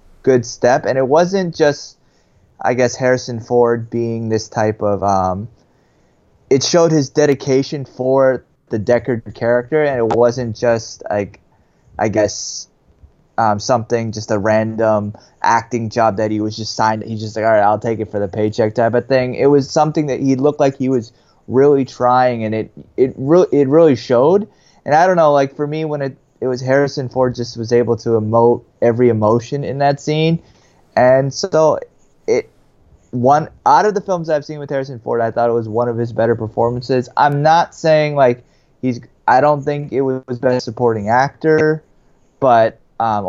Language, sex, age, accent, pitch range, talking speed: English, male, 20-39, American, 110-135 Hz, 185 wpm